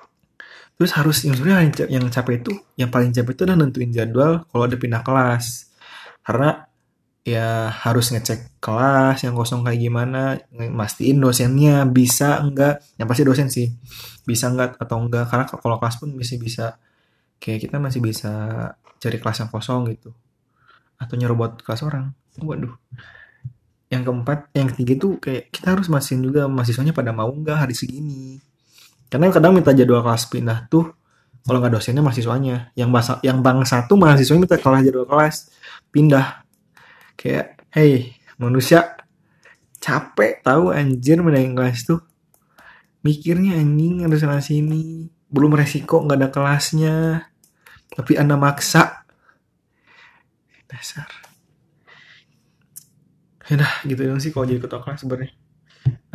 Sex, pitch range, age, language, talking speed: male, 120-150 Hz, 20-39, Indonesian, 140 wpm